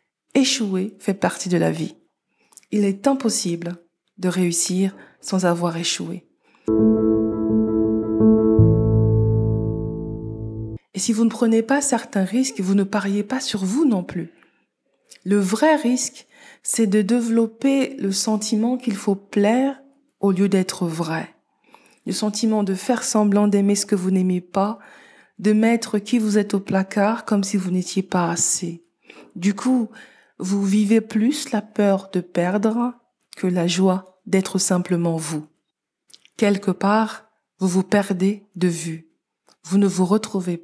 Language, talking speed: French, 140 wpm